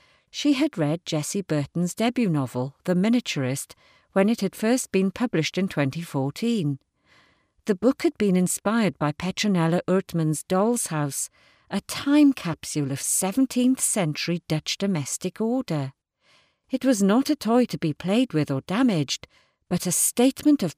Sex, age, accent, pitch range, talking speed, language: female, 50-69, British, 155-235 Hz, 145 wpm, English